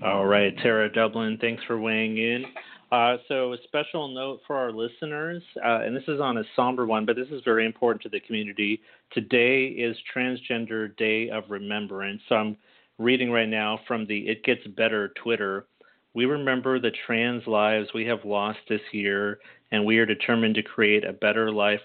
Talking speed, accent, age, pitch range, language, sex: 185 wpm, American, 30-49, 105-120 Hz, English, male